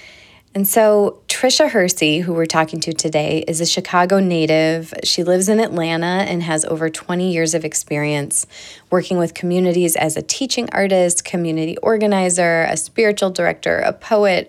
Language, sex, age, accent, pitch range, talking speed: English, female, 20-39, American, 155-180 Hz, 155 wpm